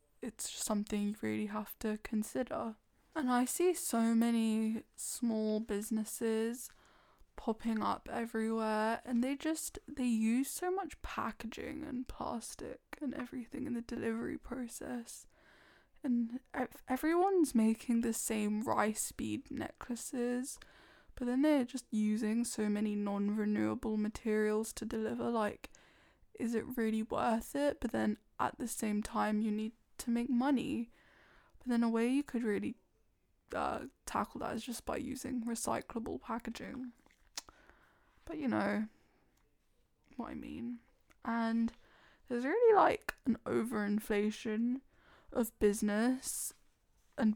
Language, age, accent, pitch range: English, 10-29, British, 215-255 Hz